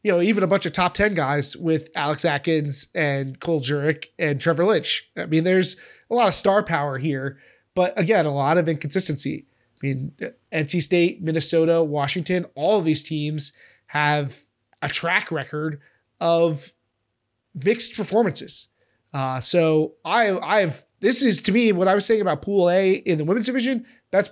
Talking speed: 175 wpm